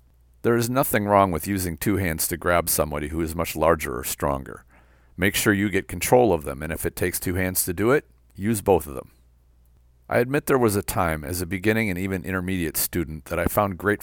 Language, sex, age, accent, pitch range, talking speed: English, male, 50-69, American, 75-100 Hz, 230 wpm